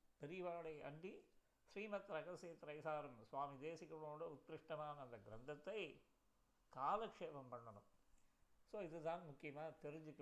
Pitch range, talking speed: 145-190 Hz, 95 wpm